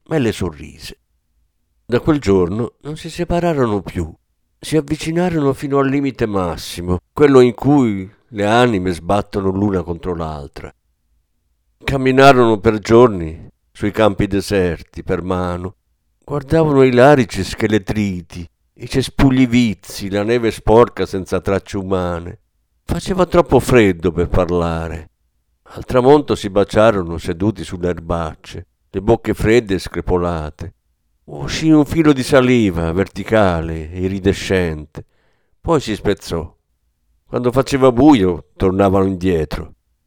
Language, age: Italian, 50-69